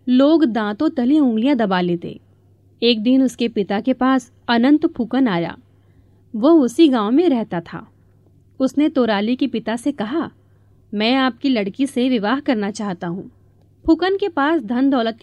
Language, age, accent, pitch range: Hindi, 30-49, native, 200-285 Hz